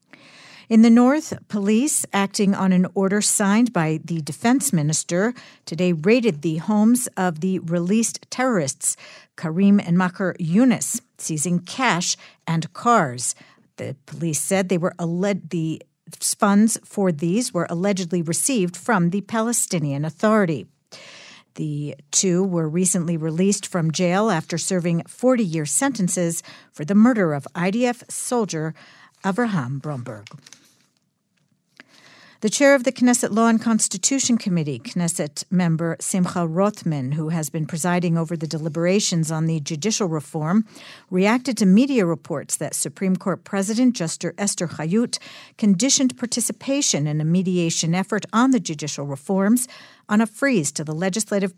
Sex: female